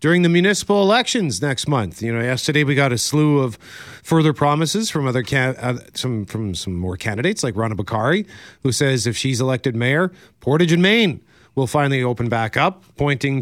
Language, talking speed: English, 190 wpm